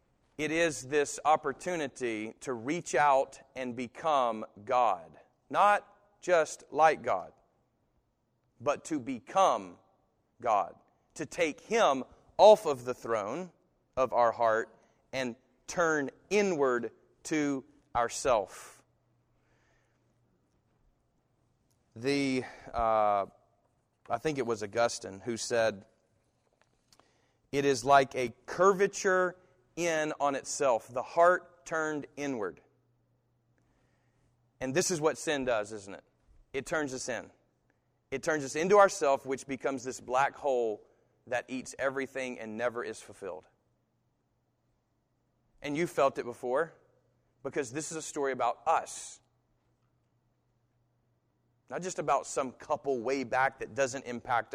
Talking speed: 115 wpm